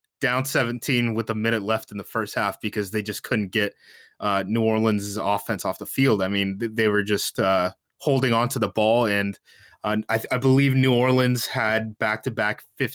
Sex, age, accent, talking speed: male, 20-39, American, 200 wpm